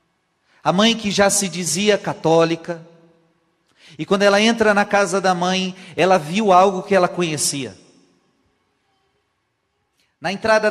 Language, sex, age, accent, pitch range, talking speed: Portuguese, male, 40-59, Brazilian, 140-190 Hz, 130 wpm